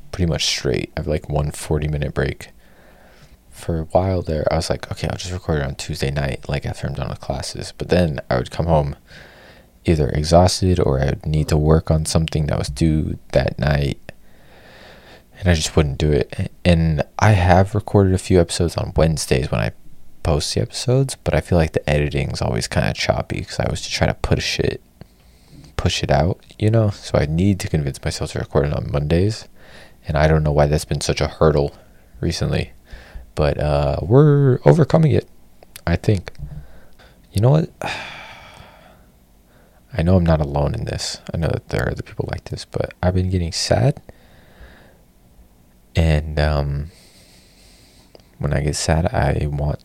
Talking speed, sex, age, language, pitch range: 185 wpm, male, 20-39, English, 70-95 Hz